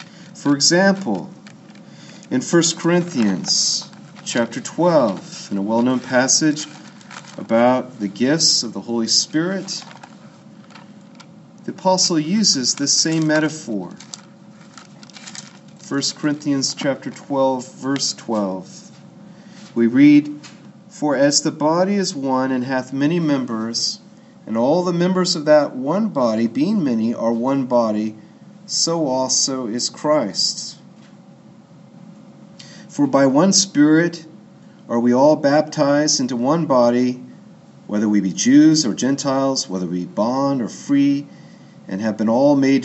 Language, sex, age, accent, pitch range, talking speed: English, male, 40-59, American, 130-195 Hz, 120 wpm